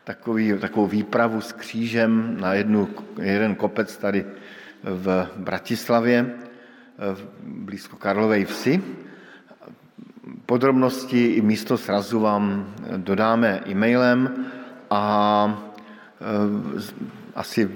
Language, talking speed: Slovak, 75 wpm